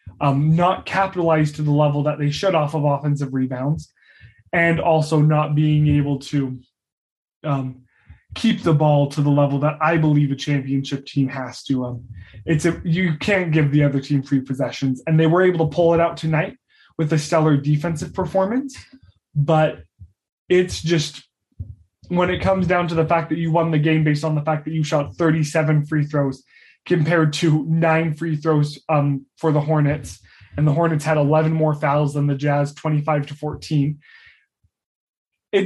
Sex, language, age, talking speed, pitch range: male, English, 20-39, 180 wpm, 140-165 Hz